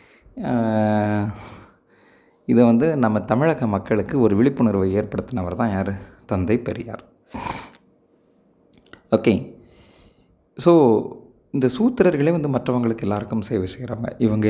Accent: native